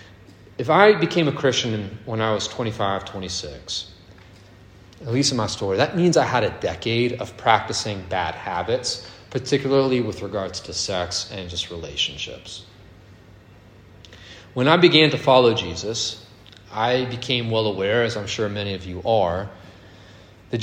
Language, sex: English, male